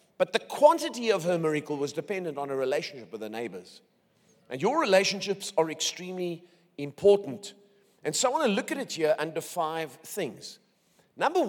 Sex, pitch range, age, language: male, 160-225 Hz, 40-59, English